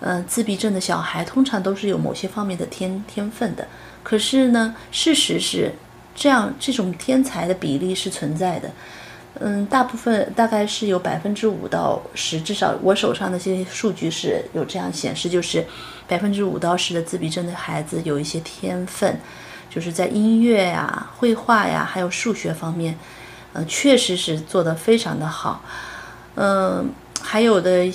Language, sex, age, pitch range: Chinese, female, 30-49, 180-220 Hz